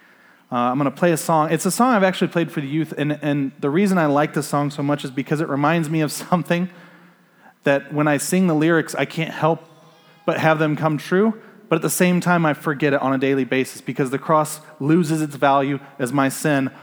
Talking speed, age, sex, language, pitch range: 245 wpm, 30-49, male, English, 150-190 Hz